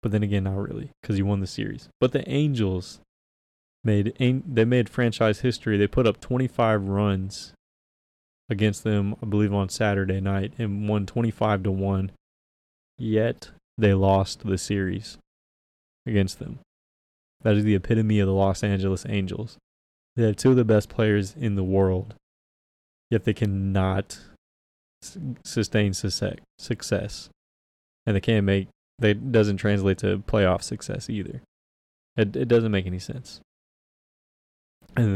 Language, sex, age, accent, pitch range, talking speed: English, male, 20-39, American, 95-110 Hz, 140 wpm